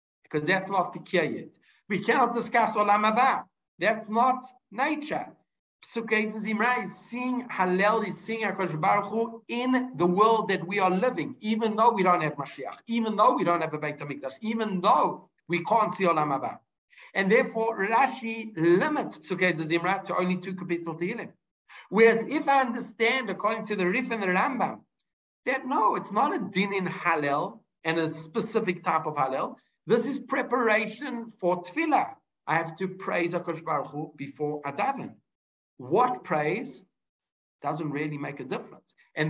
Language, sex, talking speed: English, male, 155 wpm